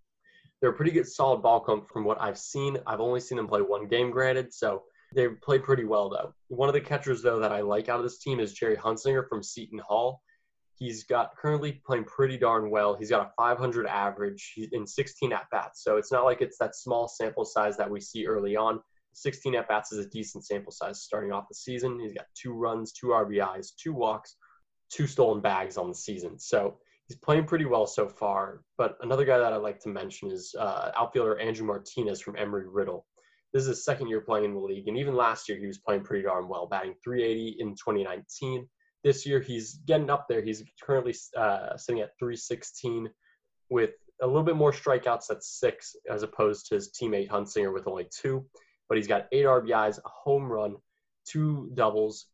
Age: 20-39